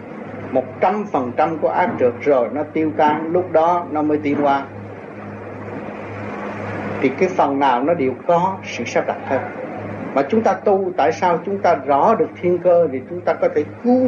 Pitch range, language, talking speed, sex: 140-180 Hz, Vietnamese, 195 wpm, male